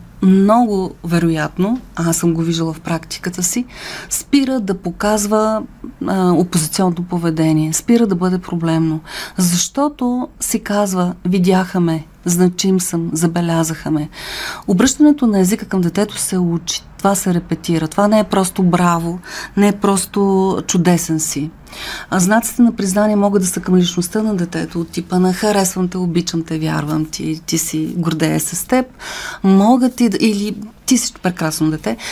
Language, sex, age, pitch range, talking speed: Bulgarian, female, 40-59, 170-215 Hz, 140 wpm